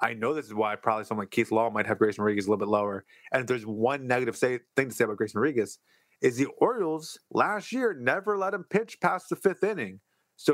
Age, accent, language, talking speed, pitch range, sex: 30-49, American, English, 245 wpm, 110-135 Hz, male